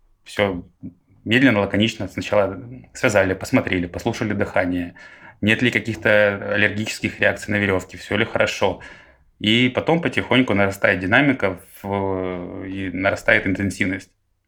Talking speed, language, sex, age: 110 wpm, Russian, male, 20-39